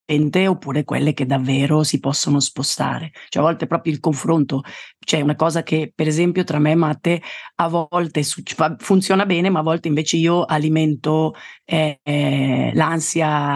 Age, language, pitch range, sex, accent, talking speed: 40-59, Italian, 155-190 Hz, female, native, 155 wpm